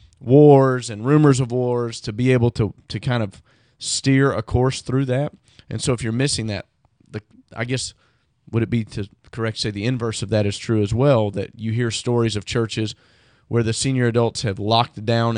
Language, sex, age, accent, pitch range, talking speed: English, male, 30-49, American, 110-130 Hz, 205 wpm